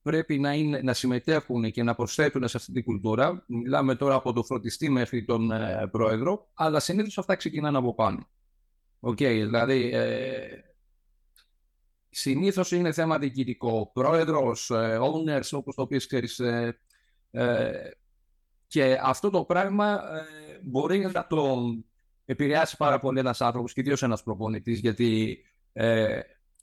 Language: Greek